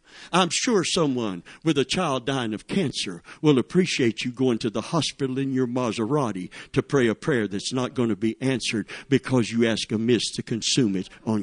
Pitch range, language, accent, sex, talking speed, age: 110-140 Hz, English, American, male, 200 wpm, 60-79